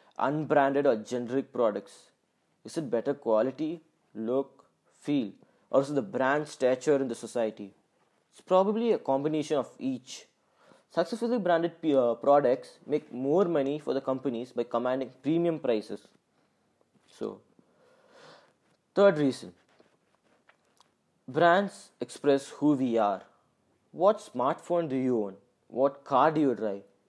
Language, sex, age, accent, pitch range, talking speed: English, male, 20-39, Indian, 130-165 Hz, 125 wpm